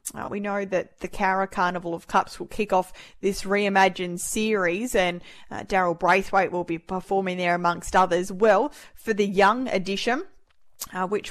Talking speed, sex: 170 wpm, female